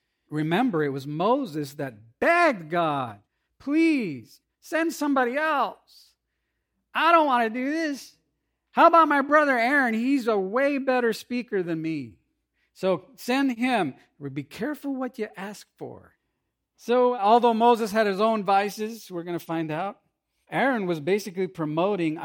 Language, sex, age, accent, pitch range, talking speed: English, male, 50-69, American, 135-215 Hz, 145 wpm